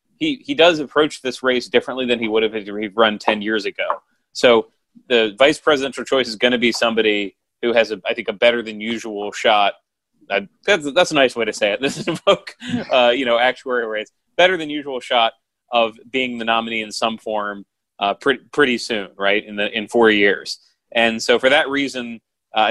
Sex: male